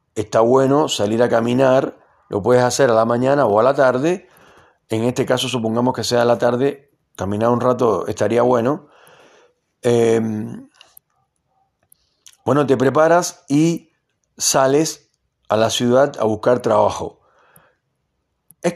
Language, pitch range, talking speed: Spanish, 115-145 Hz, 135 wpm